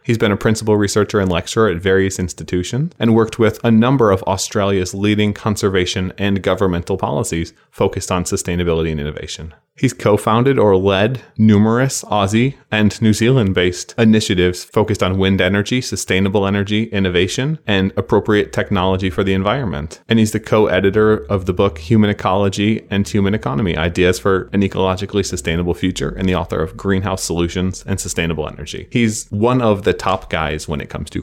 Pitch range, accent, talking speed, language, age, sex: 85-105 Hz, American, 170 wpm, English, 20-39, male